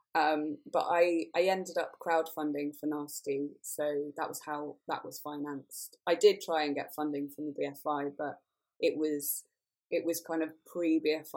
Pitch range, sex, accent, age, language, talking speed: 150-210 Hz, female, British, 20-39, English, 195 wpm